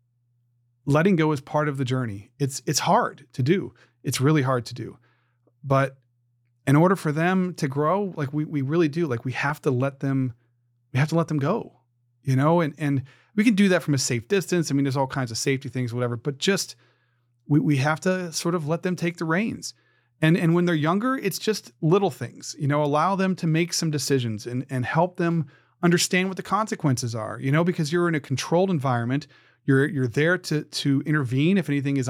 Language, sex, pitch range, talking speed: English, male, 130-170 Hz, 220 wpm